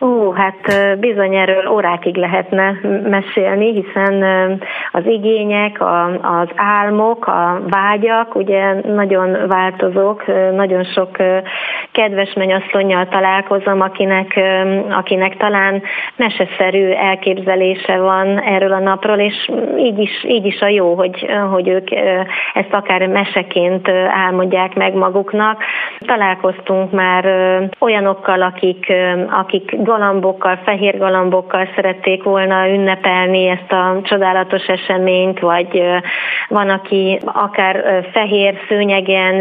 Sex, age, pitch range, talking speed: female, 30-49, 185-200 Hz, 105 wpm